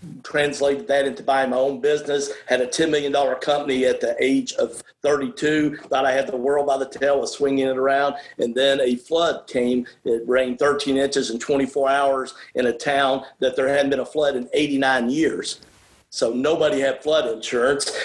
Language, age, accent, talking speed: English, 50-69, American, 195 wpm